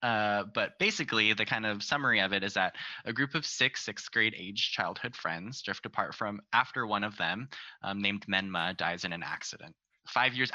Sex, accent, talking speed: male, American, 205 wpm